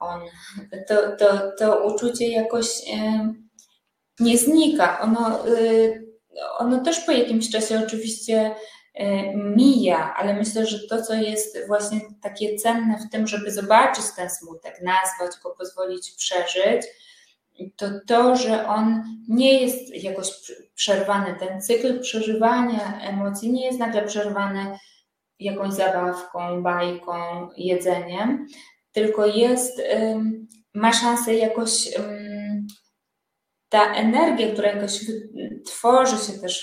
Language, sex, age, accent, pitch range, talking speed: Polish, female, 20-39, native, 200-230 Hz, 105 wpm